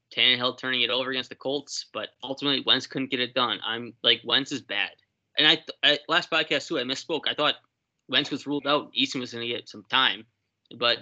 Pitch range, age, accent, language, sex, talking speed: 115-140 Hz, 20-39, American, English, male, 225 wpm